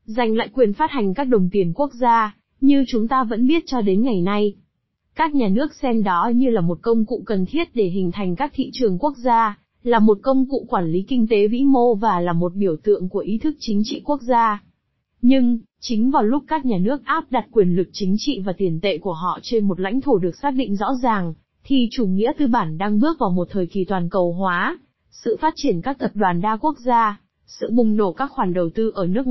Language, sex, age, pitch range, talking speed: Vietnamese, female, 20-39, 195-250 Hz, 245 wpm